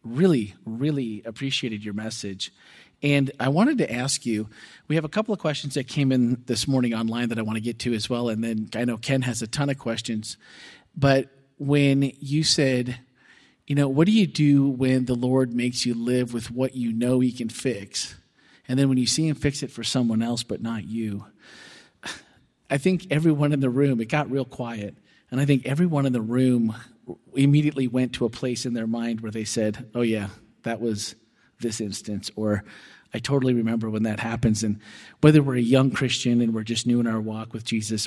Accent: American